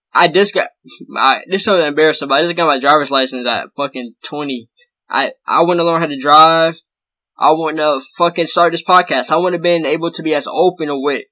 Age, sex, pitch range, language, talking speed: 10-29, male, 145-175 Hz, English, 230 wpm